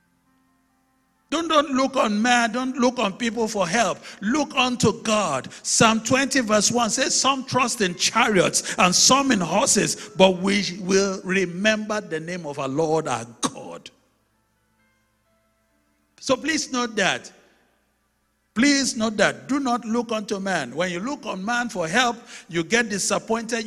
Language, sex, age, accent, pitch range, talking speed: English, male, 50-69, Nigerian, 175-235 Hz, 150 wpm